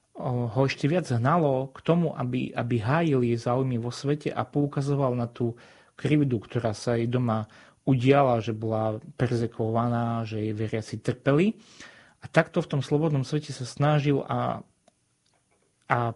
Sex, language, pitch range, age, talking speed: male, Slovak, 120-145 Hz, 30-49, 150 wpm